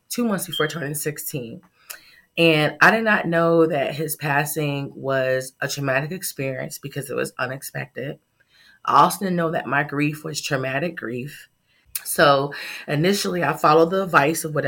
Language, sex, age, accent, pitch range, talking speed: English, female, 20-39, American, 140-165 Hz, 160 wpm